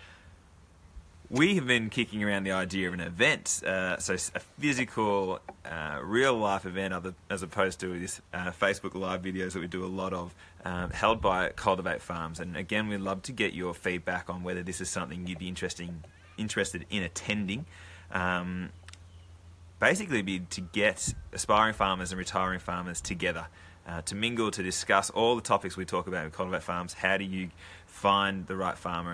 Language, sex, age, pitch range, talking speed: English, male, 20-39, 90-100 Hz, 175 wpm